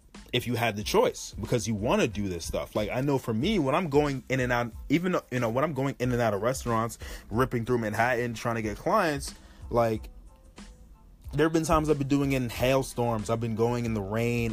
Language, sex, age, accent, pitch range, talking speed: English, male, 20-39, American, 100-115 Hz, 240 wpm